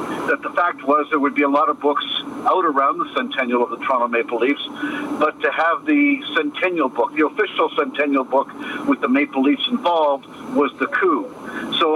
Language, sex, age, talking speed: English, male, 50-69, 195 wpm